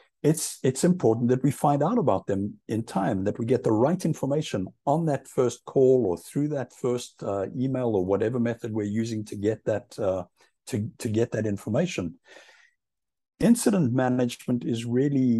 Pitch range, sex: 100-135 Hz, male